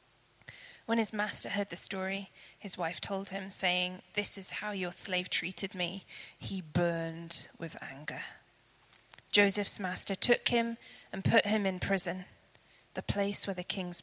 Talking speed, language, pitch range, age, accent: 155 wpm, English, 175-220 Hz, 20-39, British